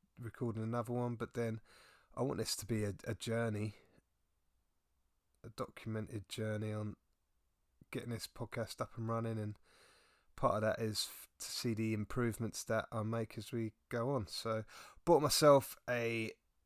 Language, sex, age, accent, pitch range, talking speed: English, male, 30-49, British, 105-120 Hz, 155 wpm